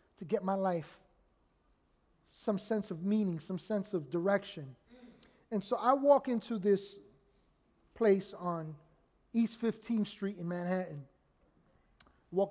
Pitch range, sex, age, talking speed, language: 175-220 Hz, male, 30-49, 125 wpm, English